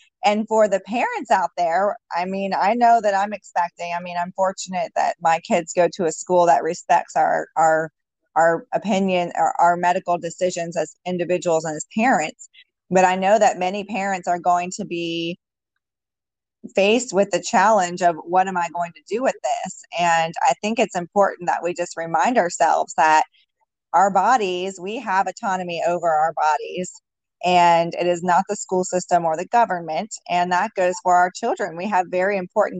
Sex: female